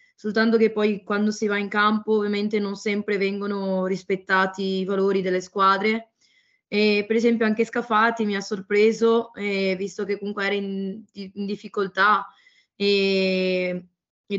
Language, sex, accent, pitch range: Italian, female, native, 200-225 Hz